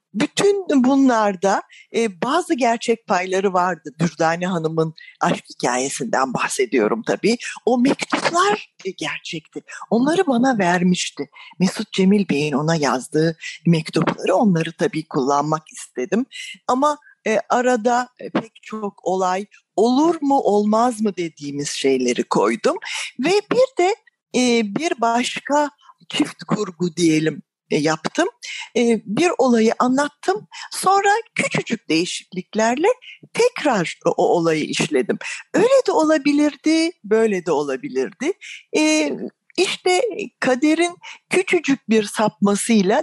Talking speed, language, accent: 105 wpm, Turkish, native